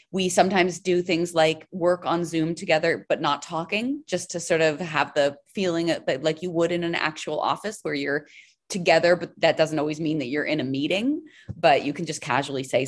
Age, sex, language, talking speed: 30-49, female, English, 215 wpm